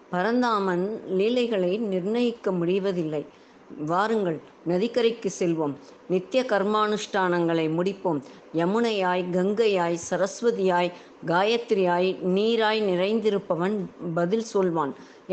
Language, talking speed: Tamil, 70 wpm